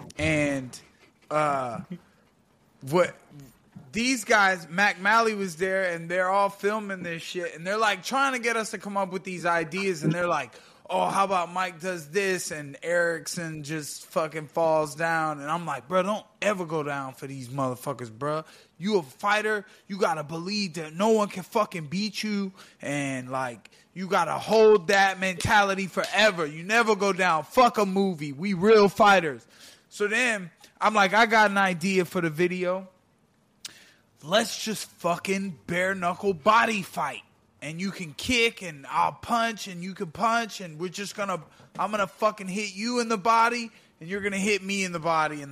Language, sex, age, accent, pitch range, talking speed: English, male, 20-39, American, 165-205 Hz, 185 wpm